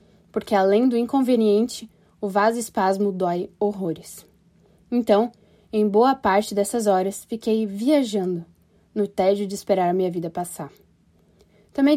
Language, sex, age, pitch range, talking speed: Portuguese, female, 10-29, 195-230 Hz, 130 wpm